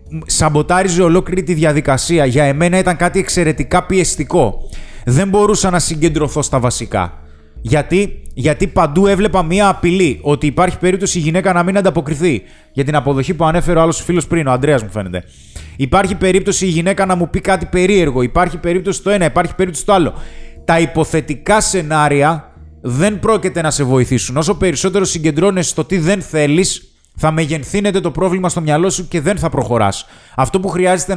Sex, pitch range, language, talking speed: male, 140-185 Hz, Greek, 170 wpm